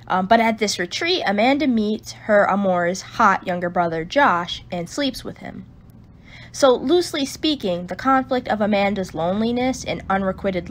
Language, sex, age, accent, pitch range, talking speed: English, female, 10-29, American, 180-255 Hz, 150 wpm